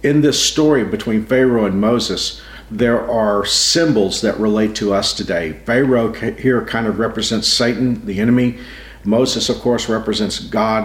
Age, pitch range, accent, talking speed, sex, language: 50-69, 110-130 Hz, American, 155 wpm, male, English